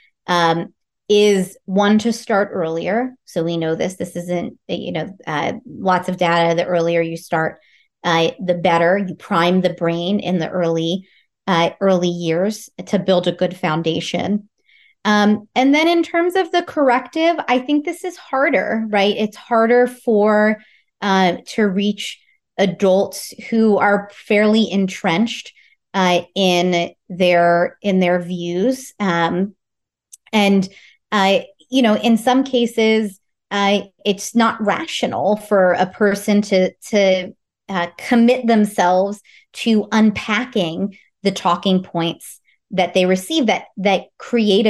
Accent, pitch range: American, 180-215 Hz